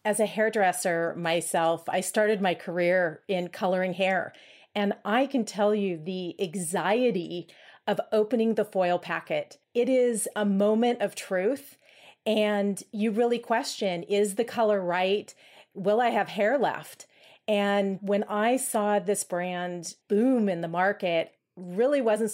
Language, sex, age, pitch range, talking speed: English, female, 40-59, 180-215 Hz, 145 wpm